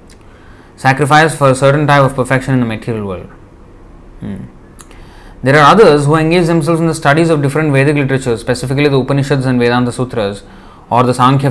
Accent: Indian